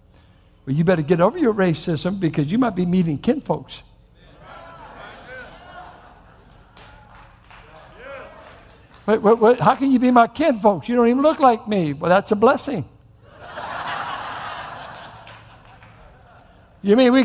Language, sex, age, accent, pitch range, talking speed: English, male, 60-79, American, 190-270 Hz, 130 wpm